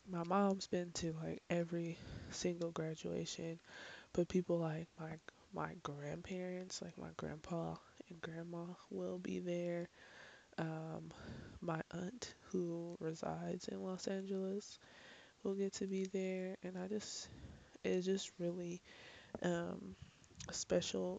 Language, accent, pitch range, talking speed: English, American, 160-180 Hz, 120 wpm